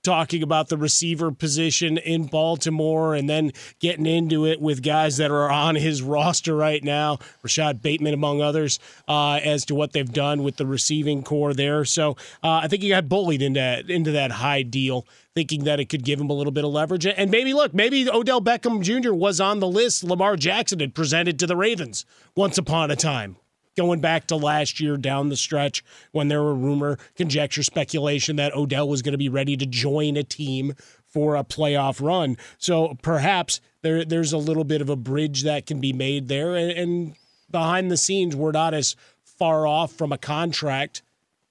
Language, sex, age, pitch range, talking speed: English, male, 30-49, 145-165 Hz, 195 wpm